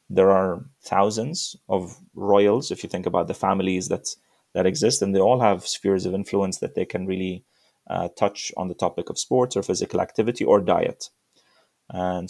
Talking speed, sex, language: 185 wpm, male, English